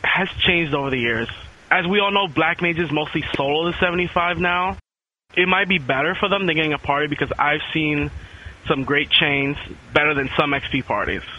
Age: 20-39